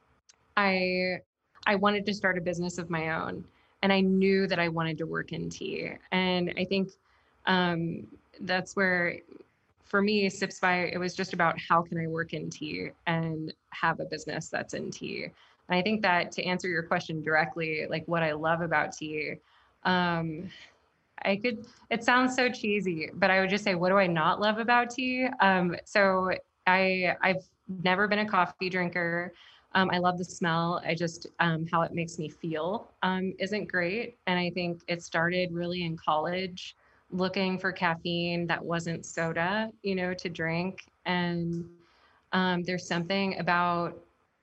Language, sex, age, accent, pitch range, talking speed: English, female, 20-39, American, 170-190 Hz, 175 wpm